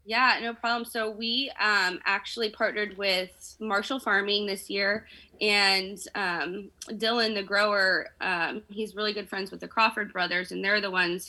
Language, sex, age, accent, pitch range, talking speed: English, female, 20-39, American, 180-220 Hz, 165 wpm